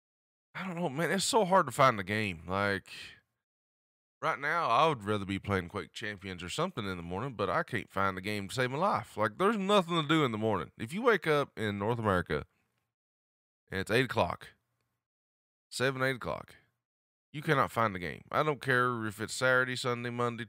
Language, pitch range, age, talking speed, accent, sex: English, 95-135 Hz, 20-39, 210 wpm, American, male